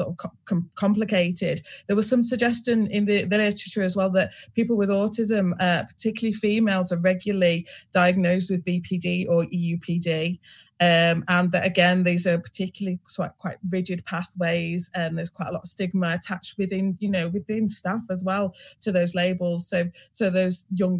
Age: 20-39